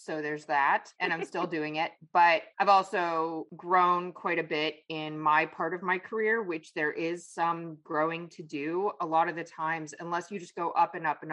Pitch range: 155-185 Hz